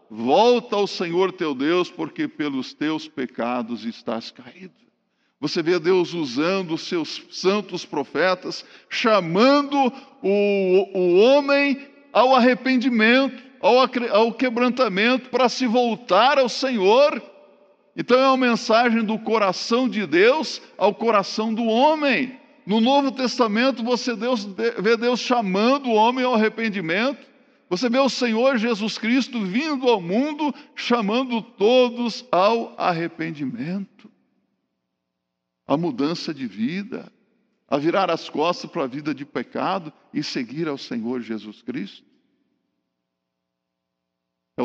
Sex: male